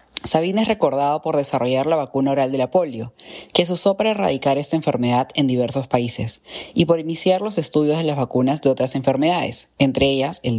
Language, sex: Spanish, female